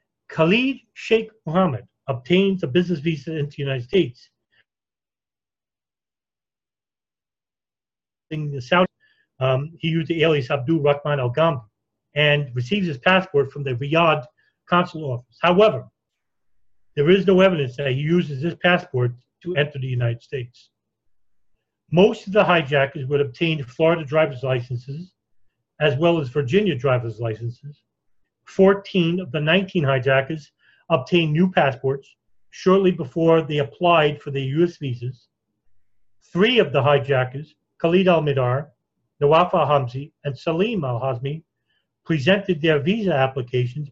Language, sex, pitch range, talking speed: English, male, 135-175 Hz, 125 wpm